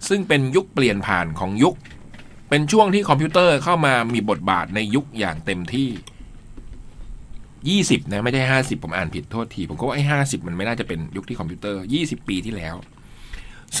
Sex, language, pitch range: male, Thai, 115-150 Hz